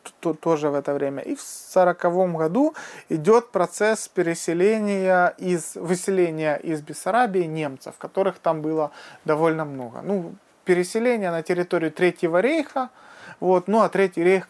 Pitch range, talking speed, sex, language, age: 155-205 Hz, 130 wpm, male, Romanian, 30-49